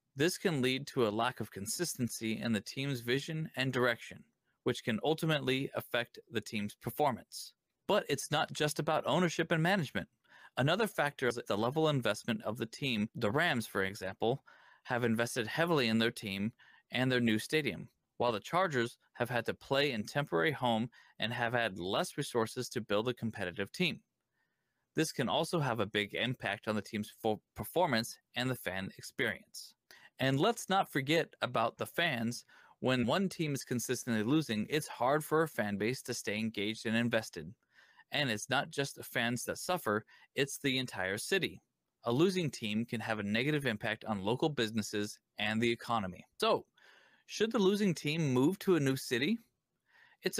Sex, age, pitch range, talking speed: male, 20-39, 110-155 Hz, 175 wpm